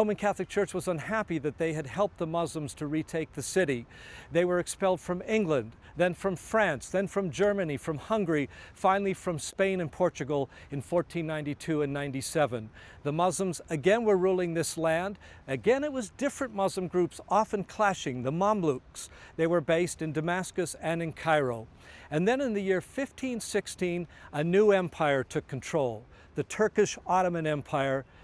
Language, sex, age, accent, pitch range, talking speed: English, male, 50-69, American, 150-195 Hz, 165 wpm